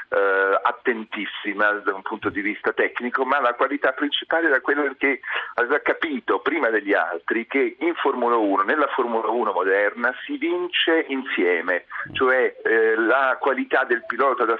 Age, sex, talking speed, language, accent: 40-59, male, 160 wpm, Italian, native